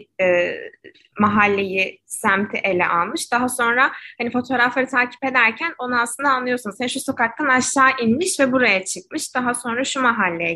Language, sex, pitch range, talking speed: Turkish, female, 200-250 Hz, 140 wpm